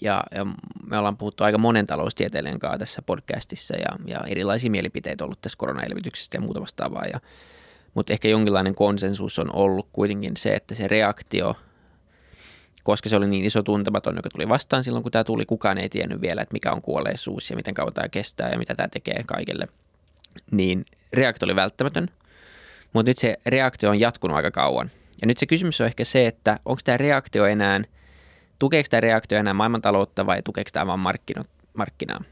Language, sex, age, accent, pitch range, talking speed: Finnish, male, 20-39, native, 100-120 Hz, 185 wpm